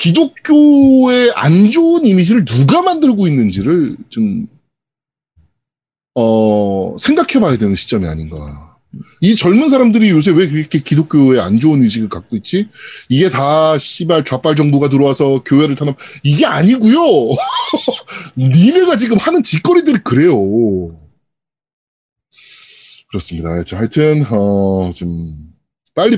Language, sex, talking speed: English, male, 100 wpm